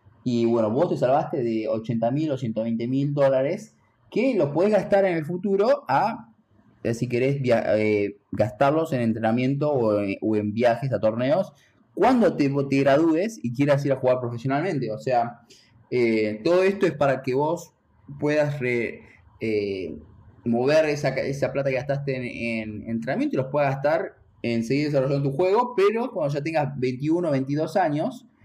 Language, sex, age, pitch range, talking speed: English, male, 20-39, 110-140 Hz, 170 wpm